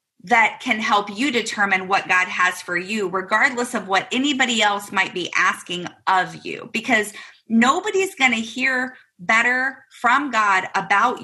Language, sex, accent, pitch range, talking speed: English, female, American, 195-255 Hz, 155 wpm